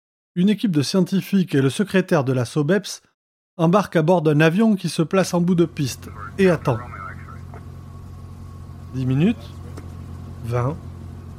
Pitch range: 130-185 Hz